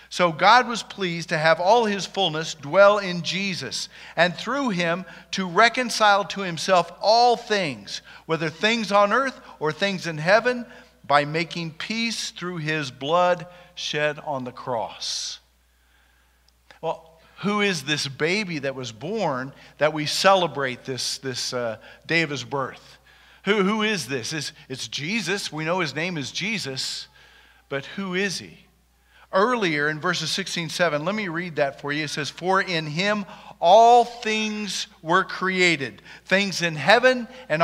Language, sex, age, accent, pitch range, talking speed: English, male, 50-69, American, 155-205 Hz, 160 wpm